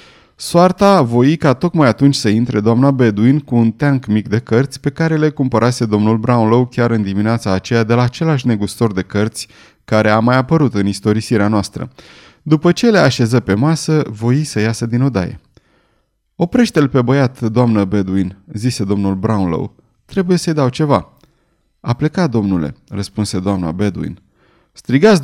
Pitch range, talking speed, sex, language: 110-155 Hz, 160 wpm, male, Romanian